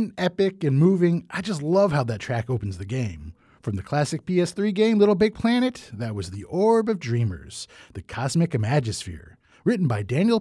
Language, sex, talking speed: English, male, 185 wpm